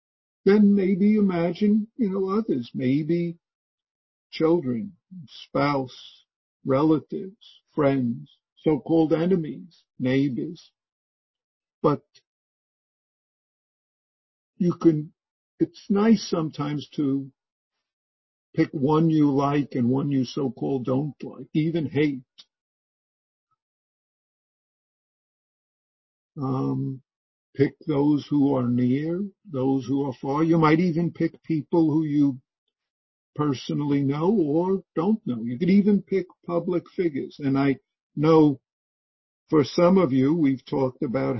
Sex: male